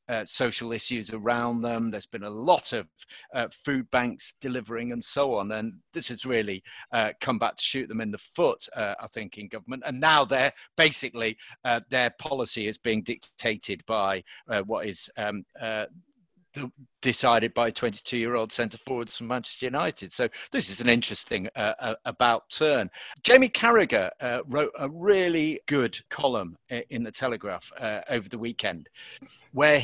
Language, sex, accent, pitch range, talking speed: English, male, British, 115-155 Hz, 160 wpm